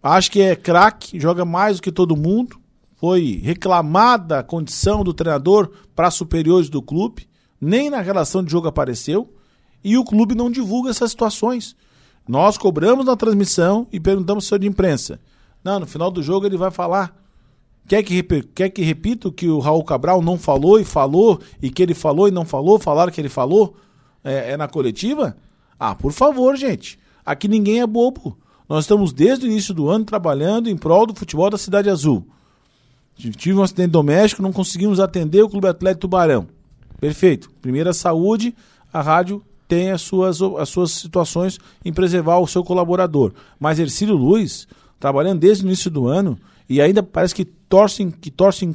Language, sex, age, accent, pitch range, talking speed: Portuguese, male, 50-69, Brazilian, 160-205 Hz, 180 wpm